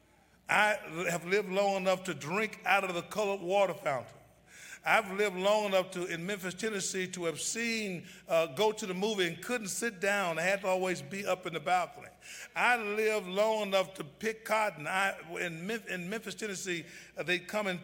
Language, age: English, 50-69